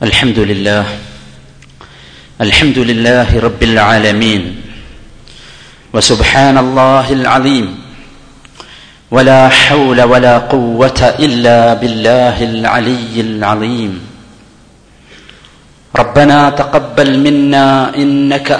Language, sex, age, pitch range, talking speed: Malayalam, male, 40-59, 130-155 Hz, 70 wpm